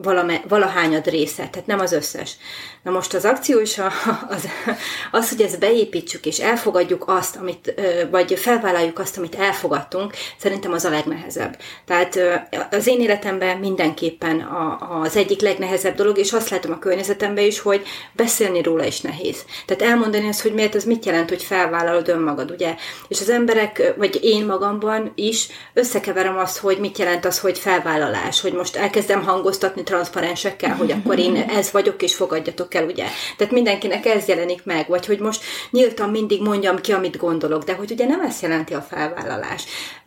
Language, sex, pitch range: Hungarian, female, 175-210 Hz